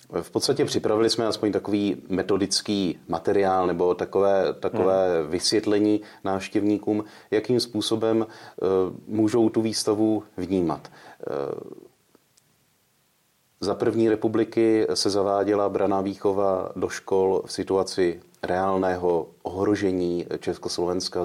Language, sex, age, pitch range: Czech, male, 30-49, 90-105 Hz